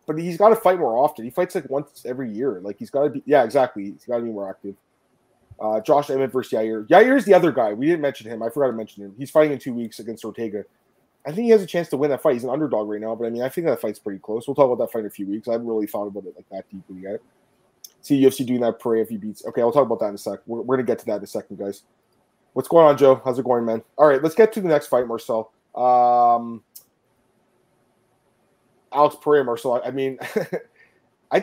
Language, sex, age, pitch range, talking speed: English, male, 20-39, 115-160 Hz, 280 wpm